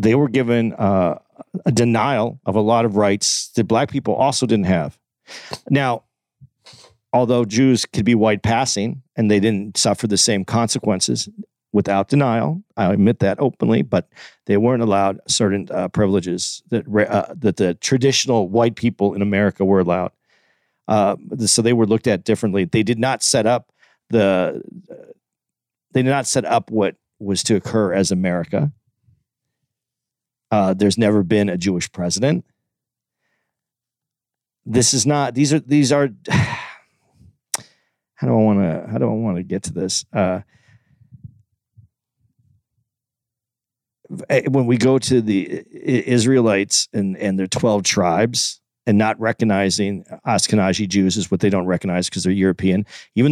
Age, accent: 40-59, American